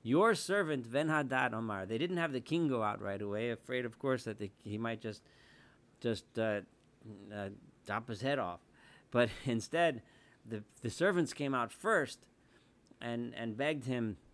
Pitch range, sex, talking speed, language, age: 110-145 Hz, male, 170 wpm, English, 40-59